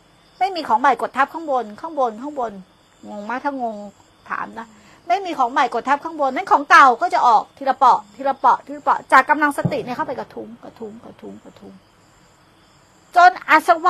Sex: female